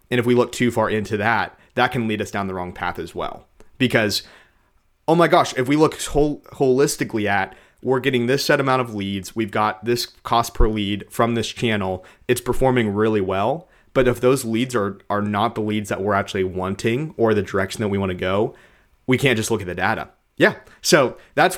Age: 30-49